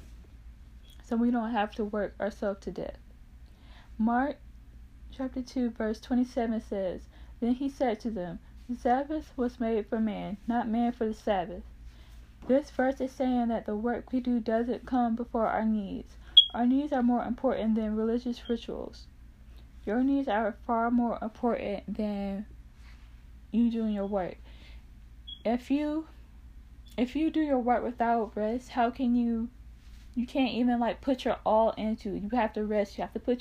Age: 10-29